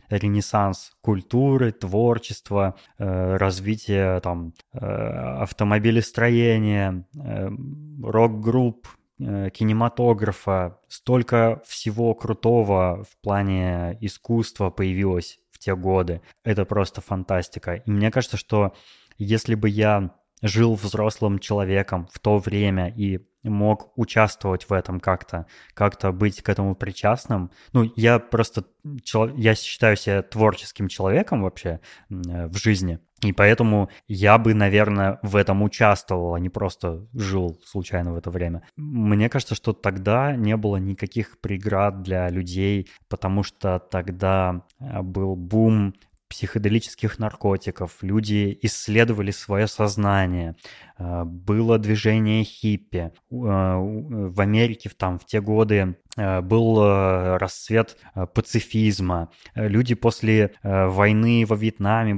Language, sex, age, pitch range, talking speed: Russian, male, 20-39, 95-110 Hz, 105 wpm